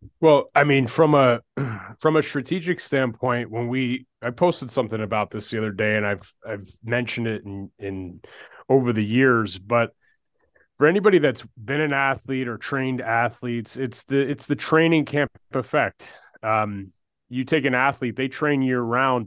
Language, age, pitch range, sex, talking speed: English, 30-49, 115-140 Hz, male, 170 wpm